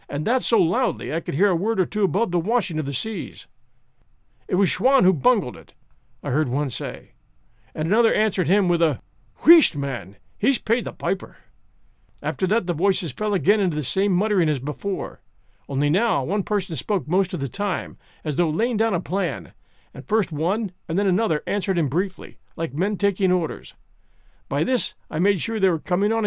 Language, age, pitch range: English, 50-69, 155-215 Hz